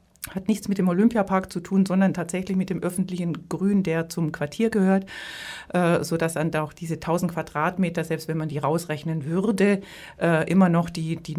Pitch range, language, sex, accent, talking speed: 165-200 Hz, German, female, German, 185 wpm